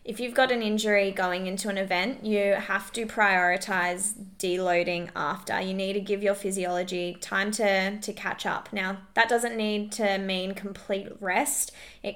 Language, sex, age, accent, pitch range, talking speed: English, female, 20-39, Australian, 185-205 Hz, 175 wpm